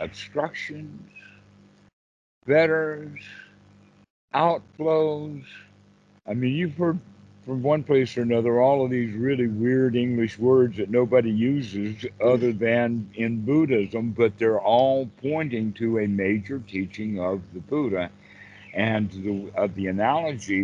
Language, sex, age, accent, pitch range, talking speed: English, male, 60-79, American, 100-135 Hz, 120 wpm